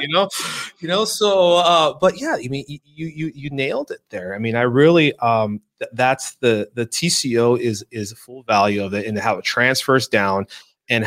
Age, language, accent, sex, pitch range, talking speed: 30-49, English, American, male, 120-165 Hz, 210 wpm